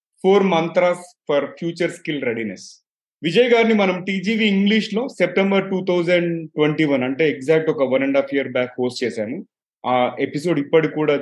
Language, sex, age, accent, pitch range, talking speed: Telugu, male, 30-49, native, 140-190 Hz, 130 wpm